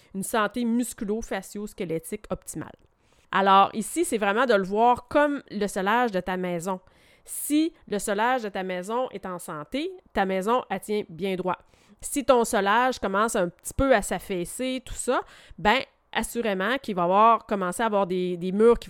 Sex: female